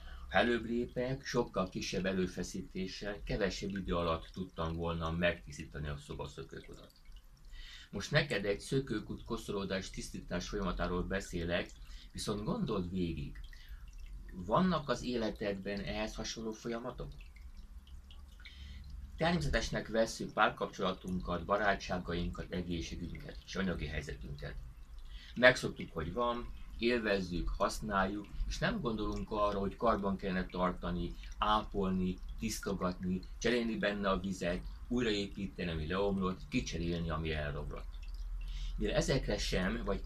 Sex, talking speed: male, 100 wpm